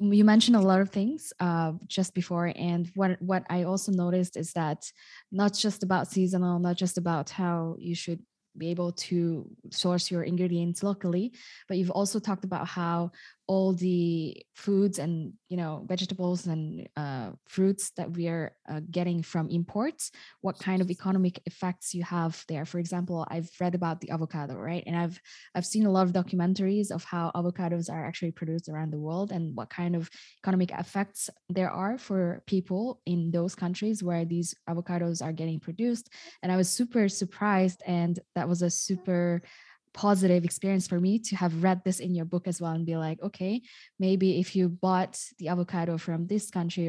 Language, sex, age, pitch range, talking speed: English, female, 20-39, 165-190 Hz, 185 wpm